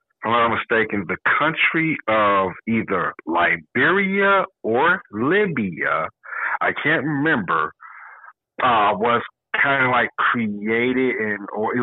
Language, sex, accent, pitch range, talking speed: English, male, American, 100-120 Hz, 115 wpm